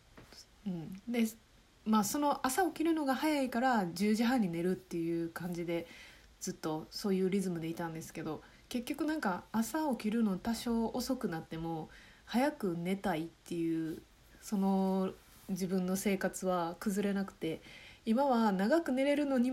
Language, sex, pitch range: Japanese, female, 175-255 Hz